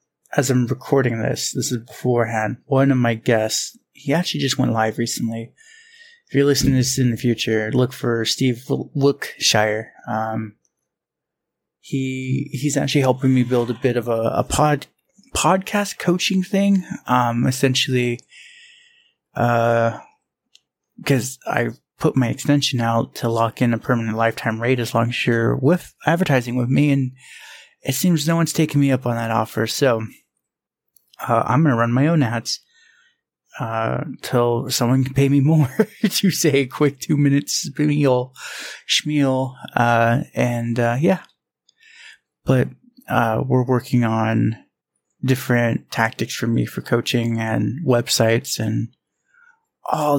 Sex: male